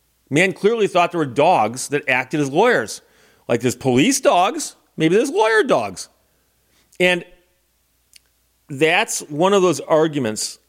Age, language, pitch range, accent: 40-59, English, 120-165 Hz, American